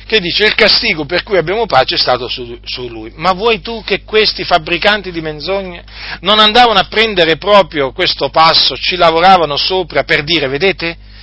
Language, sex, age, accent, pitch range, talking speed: Italian, male, 40-59, native, 125-195 Hz, 180 wpm